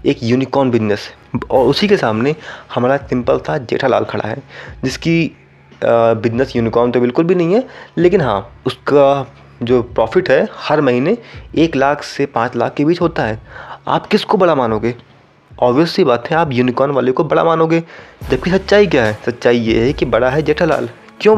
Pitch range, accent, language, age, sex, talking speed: 115-155 Hz, native, Hindi, 20-39, male, 175 wpm